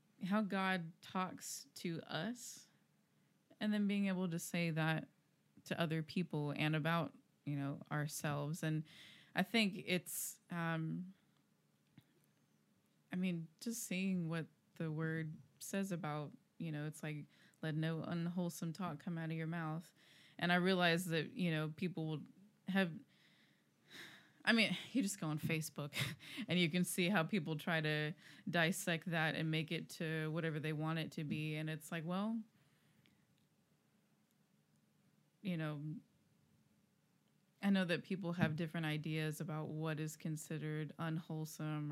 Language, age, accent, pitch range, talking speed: English, 20-39, American, 155-180 Hz, 145 wpm